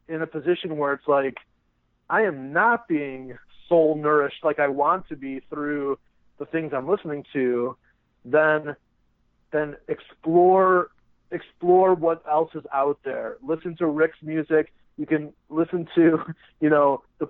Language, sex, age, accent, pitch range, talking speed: English, male, 30-49, American, 140-165 Hz, 150 wpm